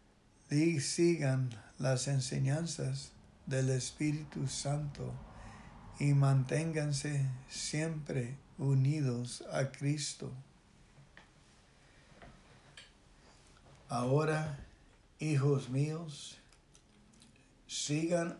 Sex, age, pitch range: male, 60-79, 130-150 Hz